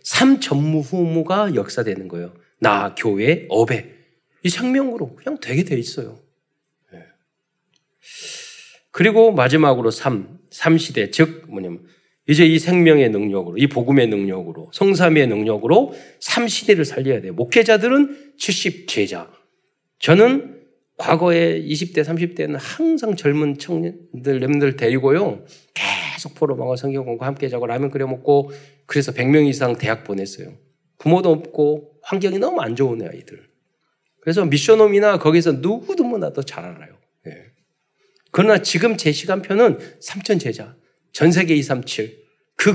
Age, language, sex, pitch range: 40-59, Korean, male, 130-195 Hz